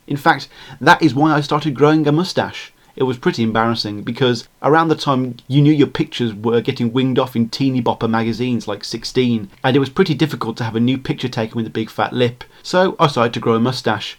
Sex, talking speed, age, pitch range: male, 235 wpm, 30-49, 120-150 Hz